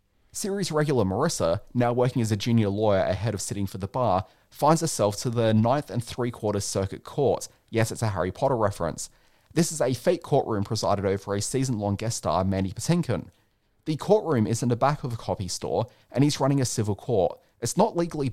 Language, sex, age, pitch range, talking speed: English, male, 30-49, 100-135 Hz, 205 wpm